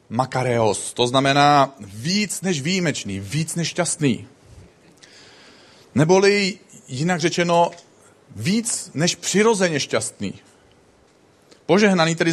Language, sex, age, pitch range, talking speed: Czech, male, 40-59, 140-190 Hz, 90 wpm